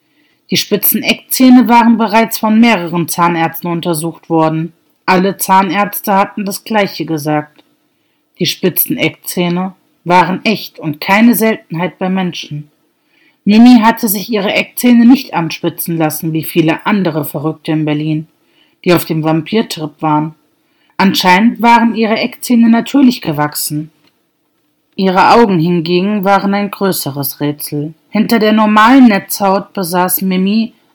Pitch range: 170-230 Hz